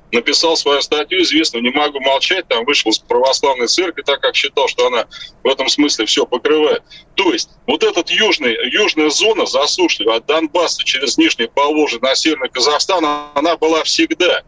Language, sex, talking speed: Russian, male, 165 wpm